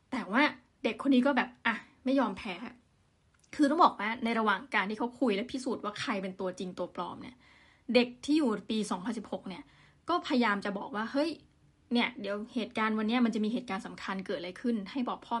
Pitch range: 210-255 Hz